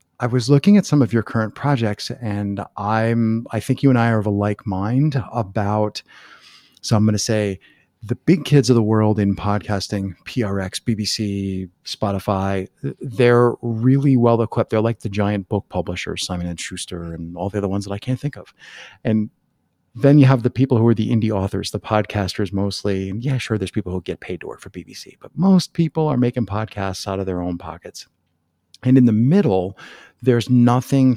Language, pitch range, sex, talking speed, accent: English, 100-125 Hz, male, 200 wpm, American